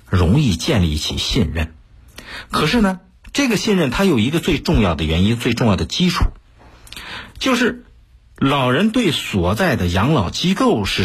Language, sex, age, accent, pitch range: Chinese, male, 50-69, native, 85-125 Hz